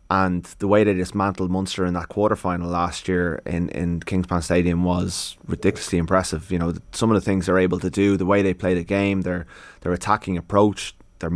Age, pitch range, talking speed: 20-39, 90-100 Hz, 210 wpm